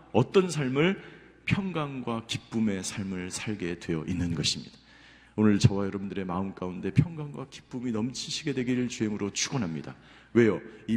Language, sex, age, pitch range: Korean, male, 40-59, 110-185 Hz